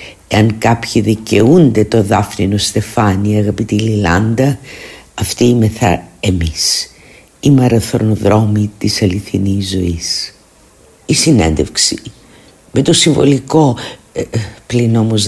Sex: female